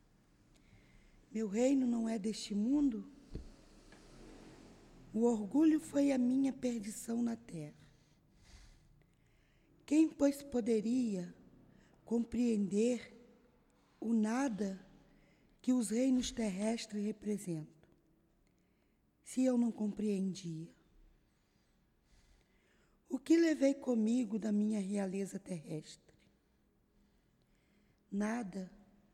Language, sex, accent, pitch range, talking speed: Portuguese, female, Brazilian, 205-255 Hz, 80 wpm